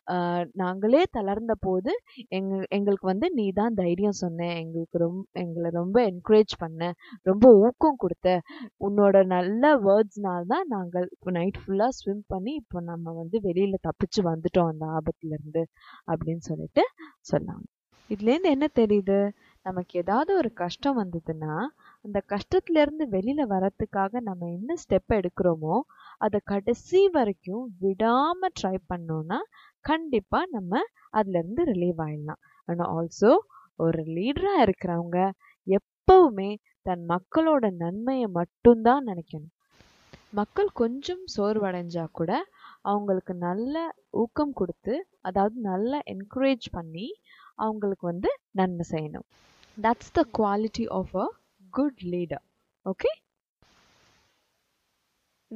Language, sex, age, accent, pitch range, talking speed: English, female, 20-39, Indian, 180-245 Hz, 105 wpm